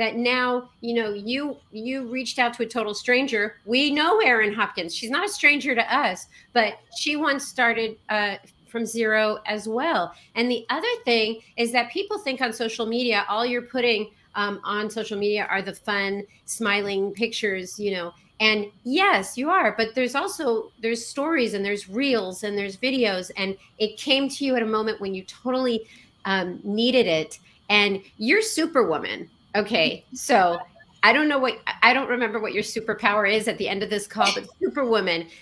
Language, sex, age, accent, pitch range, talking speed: English, female, 40-59, American, 200-245 Hz, 185 wpm